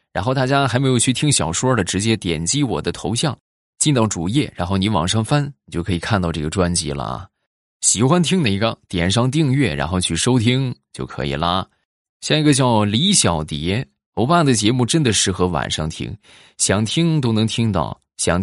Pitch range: 90-130 Hz